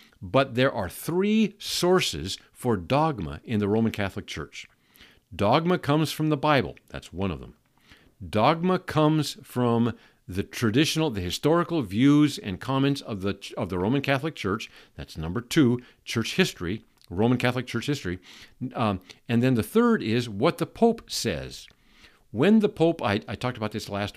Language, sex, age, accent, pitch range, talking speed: English, male, 50-69, American, 105-160 Hz, 165 wpm